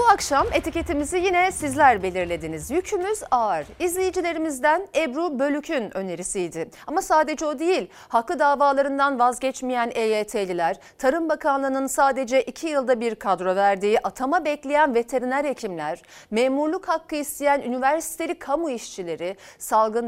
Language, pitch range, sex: Turkish, 220-320 Hz, female